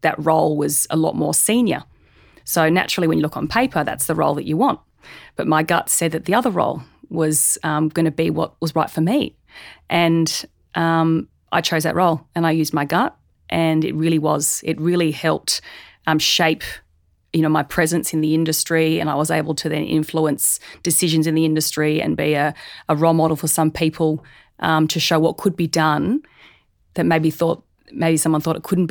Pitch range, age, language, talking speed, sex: 155-165 Hz, 30-49, English, 205 wpm, female